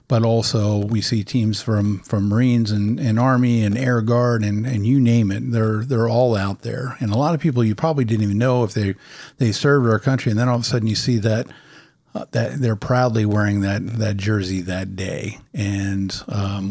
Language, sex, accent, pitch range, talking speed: English, male, American, 105-120 Hz, 220 wpm